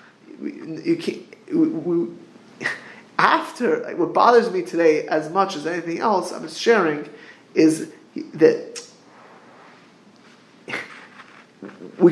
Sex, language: male, English